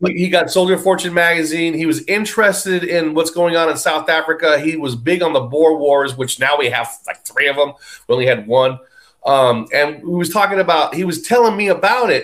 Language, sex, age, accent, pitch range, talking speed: English, male, 30-49, American, 155-215 Hz, 235 wpm